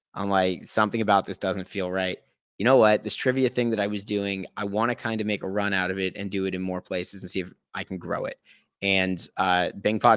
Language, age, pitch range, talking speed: English, 30-49, 95-115 Hz, 270 wpm